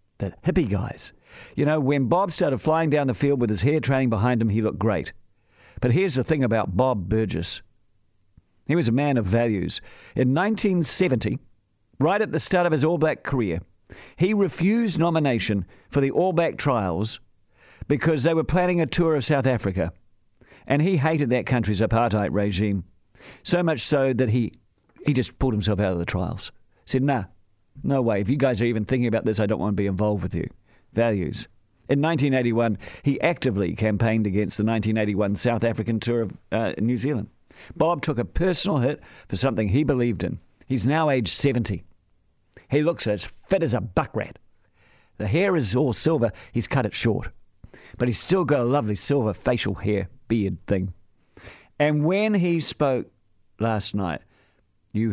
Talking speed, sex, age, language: 180 wpm, male, 50-69, English